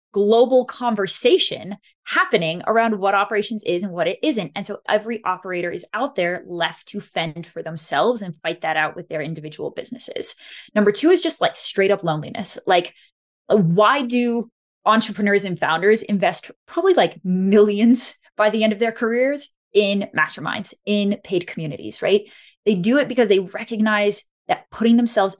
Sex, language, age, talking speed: female, English, 20-39, 165 wpm